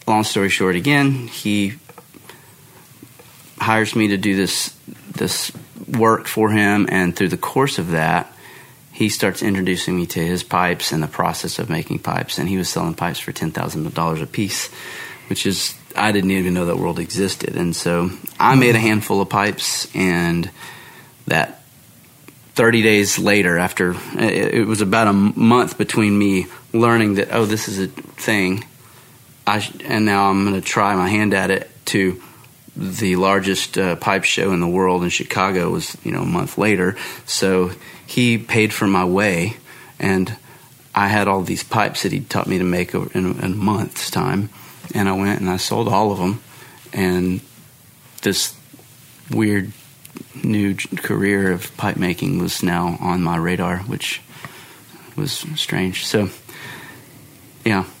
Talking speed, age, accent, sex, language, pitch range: 165 wpm, 30-49, American, male, English, 95-115 Hz